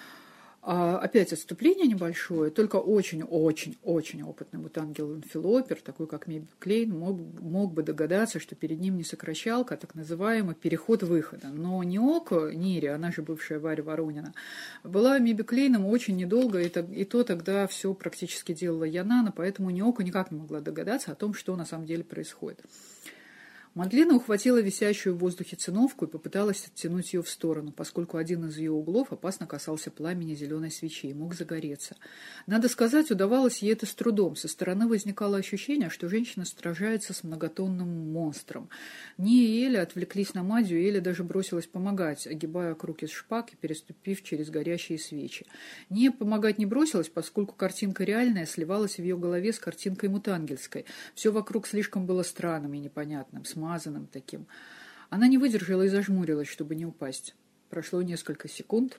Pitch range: 160-210 Hz